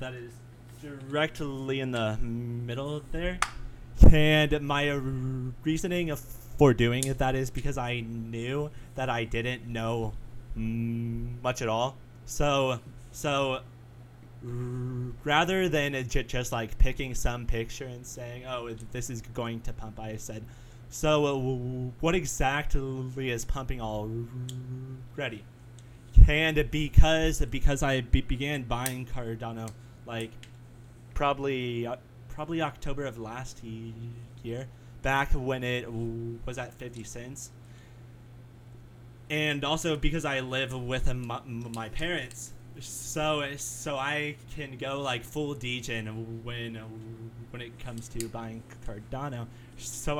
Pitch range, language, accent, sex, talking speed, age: 120-135 Hz, English, American, male, 115 wpm, 20-39